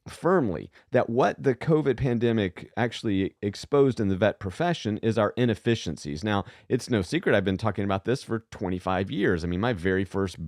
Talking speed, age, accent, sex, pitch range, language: 185 wpm, 40-59, American, male, 100-135 Hz, English